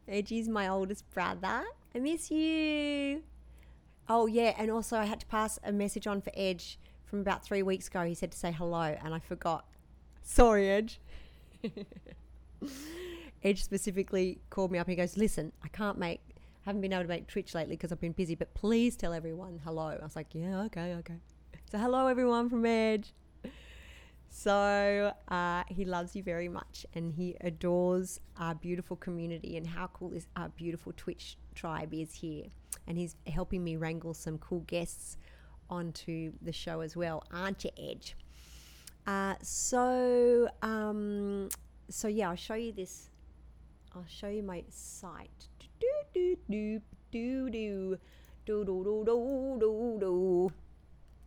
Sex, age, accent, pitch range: female, 30-49, Australian, 165-210 Hz